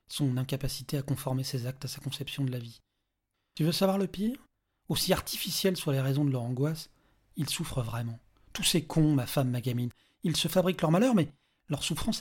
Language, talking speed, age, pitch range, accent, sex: French, 210 wpm, 40-59, 130-160 Hz, French, male